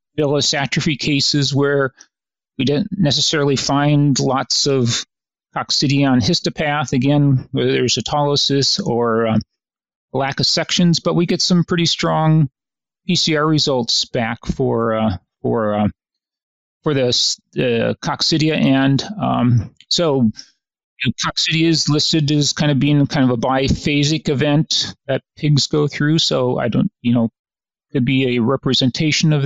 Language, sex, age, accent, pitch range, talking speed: English, male, 40-59, American, 130-150 Hz, 140 wpm